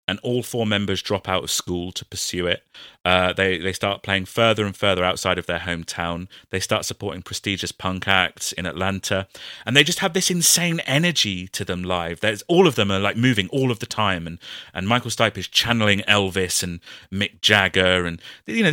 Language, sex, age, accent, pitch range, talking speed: English, male, 30-49, British, 90-115 Hz, 210 wpm